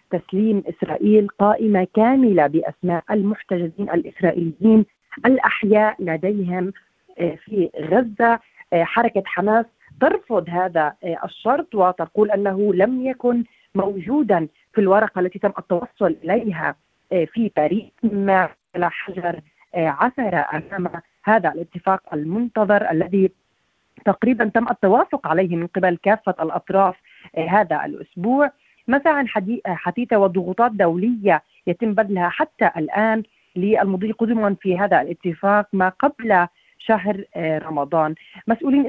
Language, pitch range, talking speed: Arabic, 175-220 Hz, 100 wpm